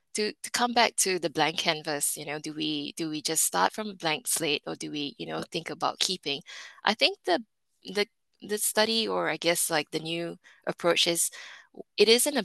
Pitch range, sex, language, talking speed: 160-200 Hz, female, English, 215 wpm